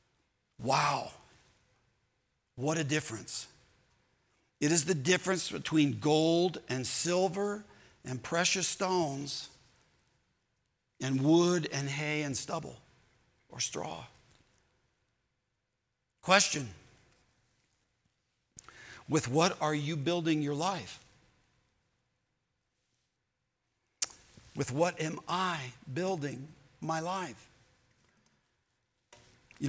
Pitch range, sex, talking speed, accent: 135-190 Hz, male, 80 wpm, American